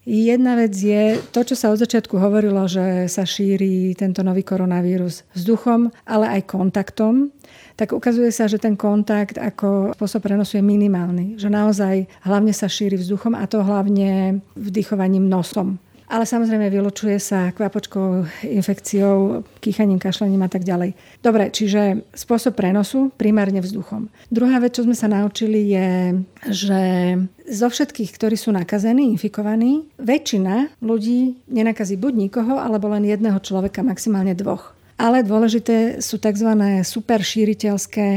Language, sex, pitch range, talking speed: Slovak, female, 195-225 Hz, 140 wpm